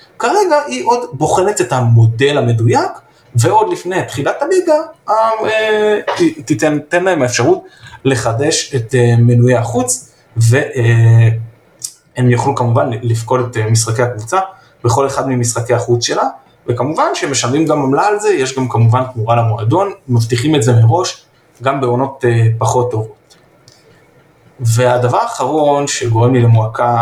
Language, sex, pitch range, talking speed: Hebrew, male, 115-145 Hz, 125 wpm